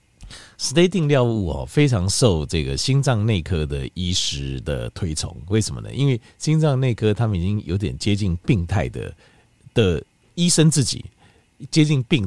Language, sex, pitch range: Chinese, male, 85-125 Hz